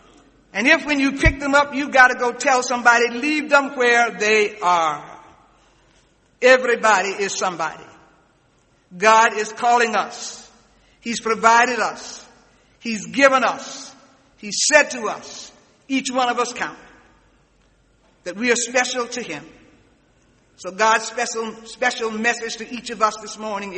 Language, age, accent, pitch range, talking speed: English, 60-79, American, 210-245 Hz, 145 wpm